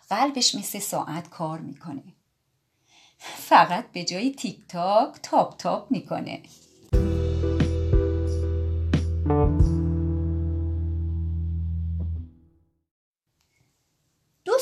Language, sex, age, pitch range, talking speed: Persian, female, 30-49, 135-205 Hz, 55 wpm